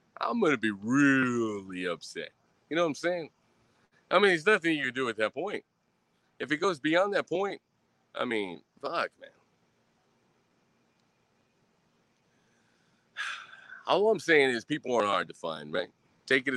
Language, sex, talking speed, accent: English, male, 160 wpm, American